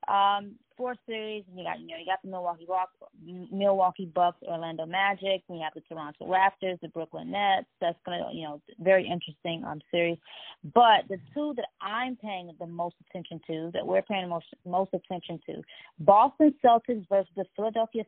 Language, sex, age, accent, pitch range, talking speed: English, female, 20-39, American, 170-205 Hz, 185 wpm